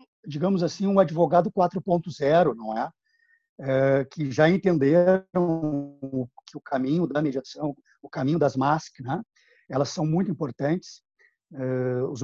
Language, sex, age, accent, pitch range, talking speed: Portuguese, male, 50-69, Brazilian, 140-180 Hz, 135 wpm